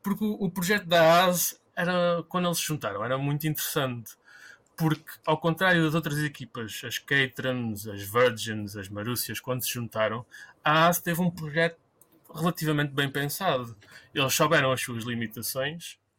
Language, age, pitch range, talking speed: English, 20-39, 125-165 Hz, 150 wpm